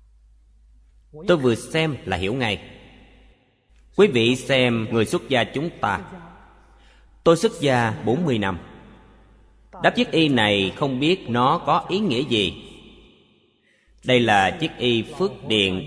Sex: male